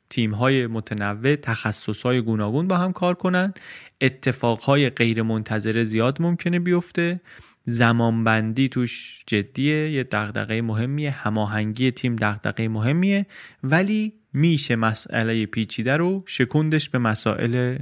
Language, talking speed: Persian, 120 wpm